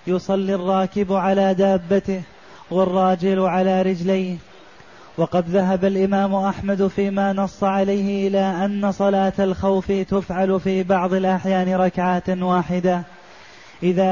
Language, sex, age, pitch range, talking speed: Arabic, male, 20-39, 185-195 Hz, 105 wpm